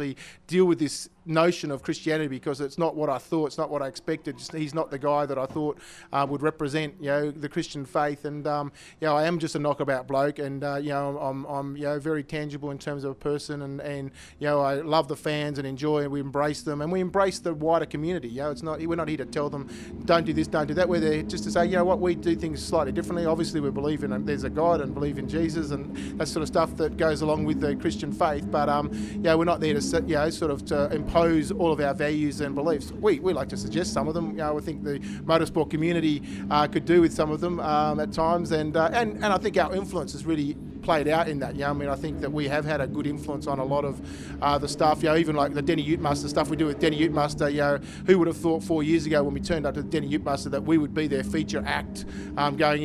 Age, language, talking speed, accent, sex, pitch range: 30-49, English, 285 wpm, Australian, male, 145-160 Hz